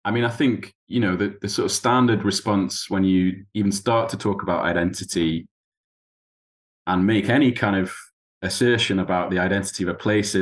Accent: British